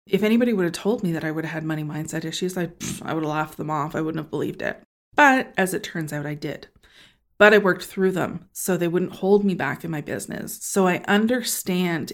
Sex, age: female, 30-49